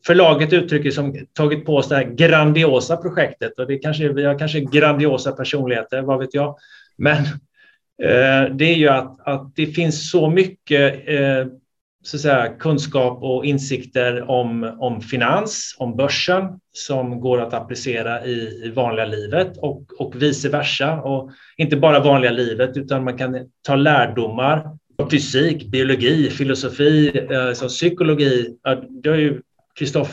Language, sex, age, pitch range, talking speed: Swedish, male, 30-49, 130-155 Hz, 150 wpm